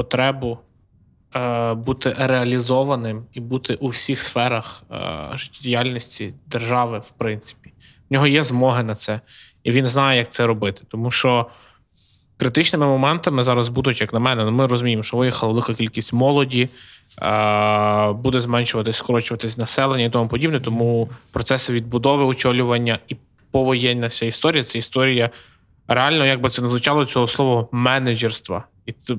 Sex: male